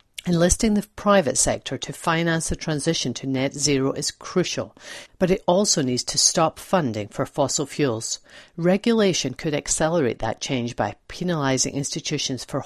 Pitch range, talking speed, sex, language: 130-175 Hz, 150 wpm, female, English